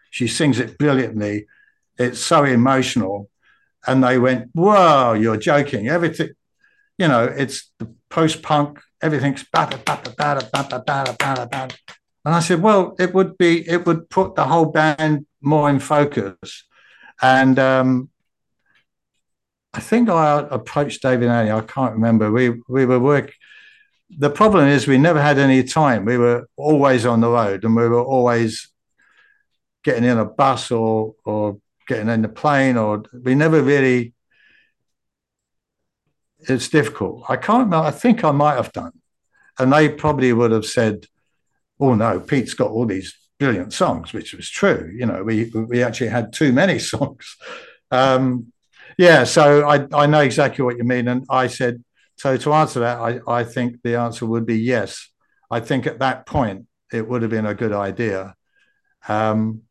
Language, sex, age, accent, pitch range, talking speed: English, male, 60-79, British, 120-150 Hz, 165 wpm